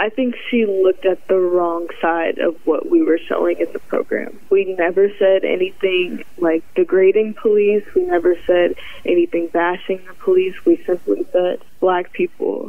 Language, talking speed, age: English, 165 wpm, 20-39